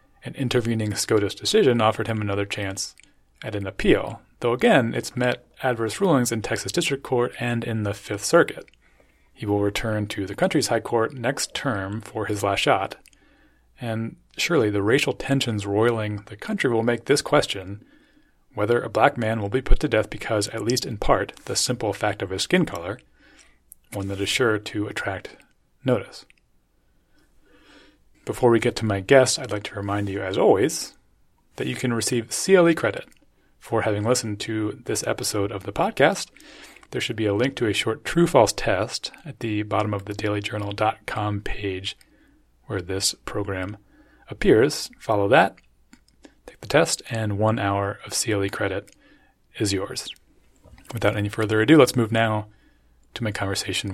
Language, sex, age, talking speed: English, male, 30-49, 170 wpm